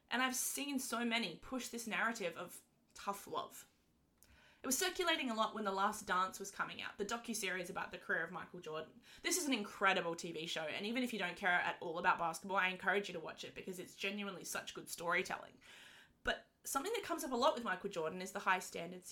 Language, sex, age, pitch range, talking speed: English, female, 20-39, 190-255 Hz, 230 wpm